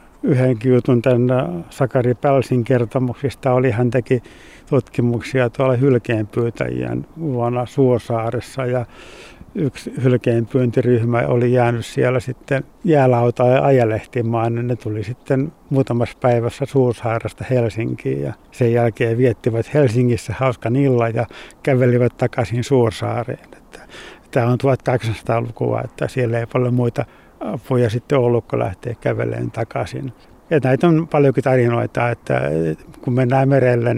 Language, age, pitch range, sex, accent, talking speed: Finnish, 60-79, 115-130 Hz, male, native, 110 wpm